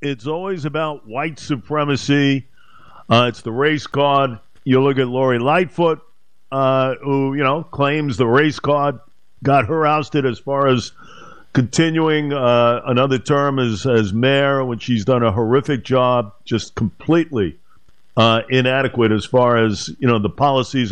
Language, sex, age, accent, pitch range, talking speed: English, male, 50-69, American, 130-165 Hz, 150 wpm